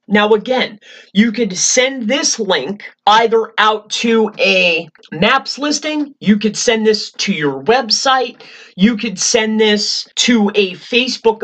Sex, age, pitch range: male, 30-49, 205-250 Hz